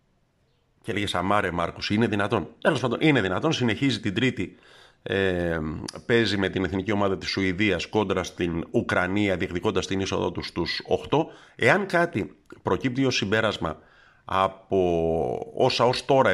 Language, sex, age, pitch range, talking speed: Greek, male, 50-69, 90-120 Hz, 145 wpm